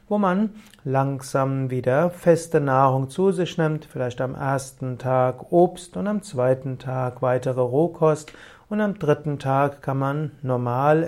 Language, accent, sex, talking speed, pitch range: German, German, male, 145 wpm, 130-160 Hz